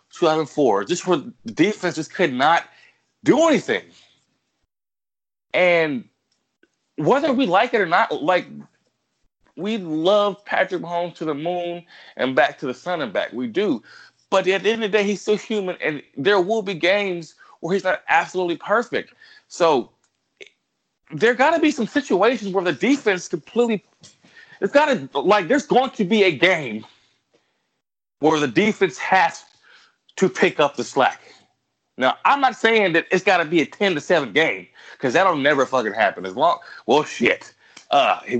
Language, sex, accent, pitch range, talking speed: English, male, American, 160-215 Hz, 165 wpm